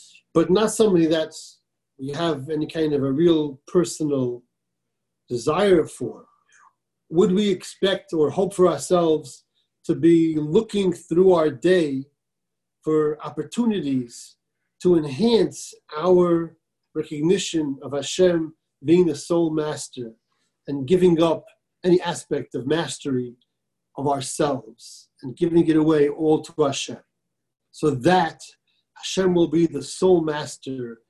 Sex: male